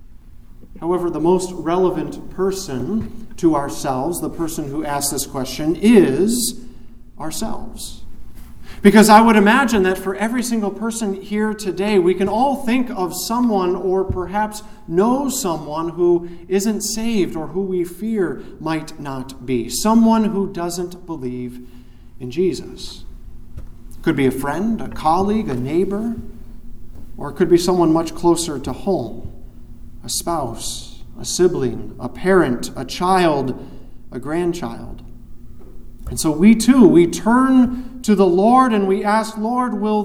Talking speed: 140 wpm